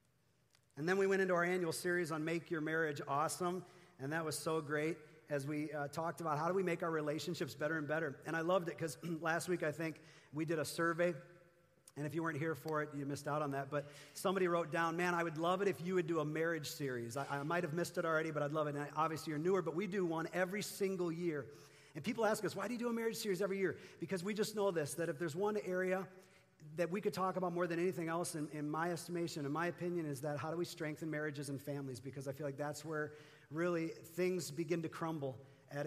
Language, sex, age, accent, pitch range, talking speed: English, male, 40-59, American, 145-175 Hz, 260 wpm